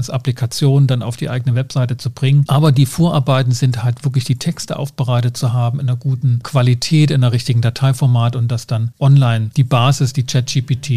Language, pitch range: German, 125-145 Hz